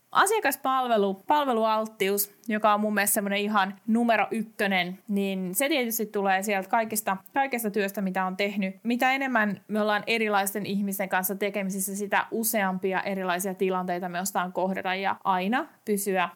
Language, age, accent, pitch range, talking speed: Finnish, 20-39, native, 190-235 Hz, 135 wpm